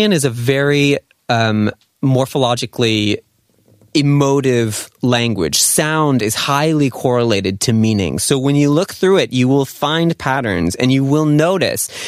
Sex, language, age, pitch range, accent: male, Korean, 20-39, 120-155 Hz, American